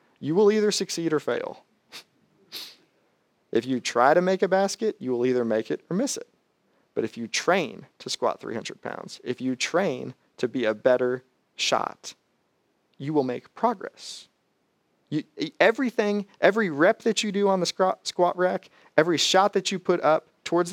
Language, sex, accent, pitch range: English, male, American, 130-195 Hz